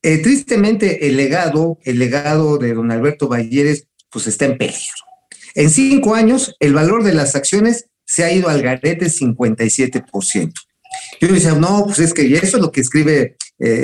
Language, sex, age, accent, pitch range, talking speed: Spanish, male, 50-69, Mexican, 130-185 Hz, 180 wpm